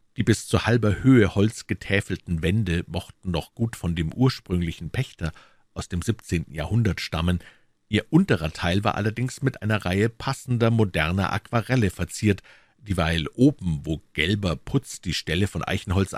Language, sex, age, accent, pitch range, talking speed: German, male, 50-69, German, 85-110 Hz, 150 wpm